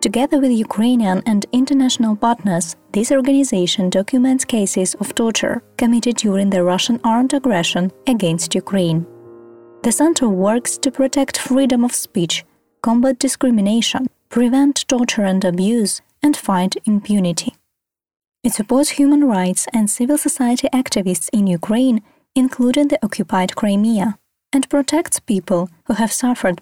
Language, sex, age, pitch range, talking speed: Ukrainian, female, 20-39, 190-255 Hz, 130 wpm